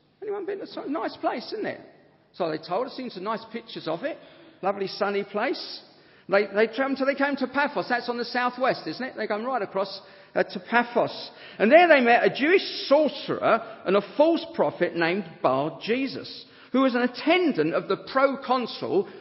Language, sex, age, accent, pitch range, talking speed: English, male, 50-69, British, 175-250 Hz, 185 wpm